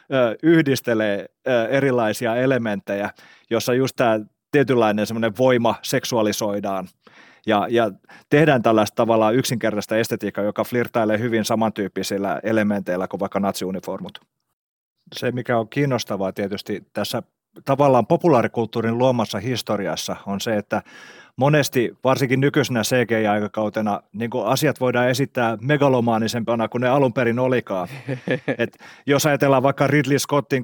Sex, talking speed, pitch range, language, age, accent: male, 110 wpm, 110-130 Hz, Finnish, 30-49, native